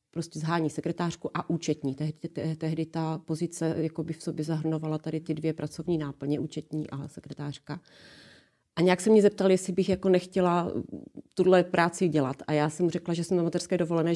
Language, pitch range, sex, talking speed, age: Czech, 160-180 Hz, female, 170 wpm, 30-49